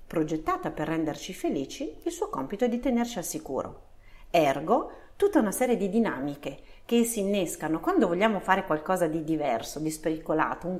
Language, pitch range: Italian, 160-220 Hz